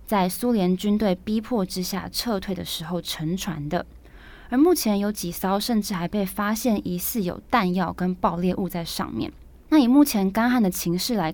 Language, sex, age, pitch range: Chinese, female, 20-39, 175-225 Hz